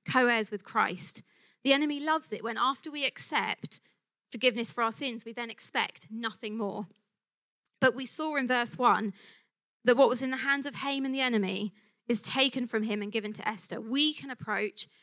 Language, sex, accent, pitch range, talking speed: English, female, British, 205-245 Hz, 190 wpm